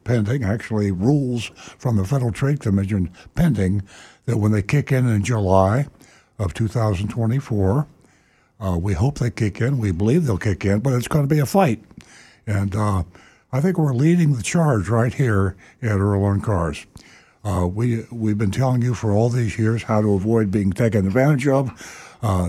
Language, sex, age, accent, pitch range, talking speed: English, male, 60-79, American, 100-125 Hz, 185 wpm